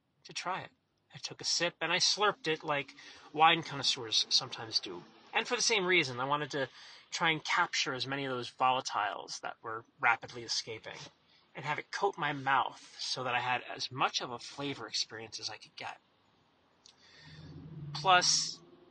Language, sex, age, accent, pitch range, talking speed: English, male, 30-49, American, 125-160 Hz, 180 wpm